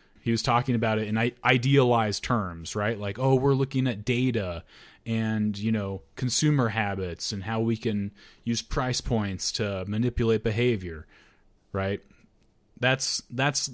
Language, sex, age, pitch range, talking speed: English, male, 30-49, 100-120 Hz, 145 wpm